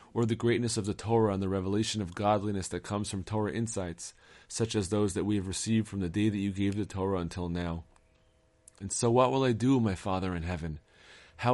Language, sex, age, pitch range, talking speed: English, male, 30-49, 90-115 Hz, 230 wpm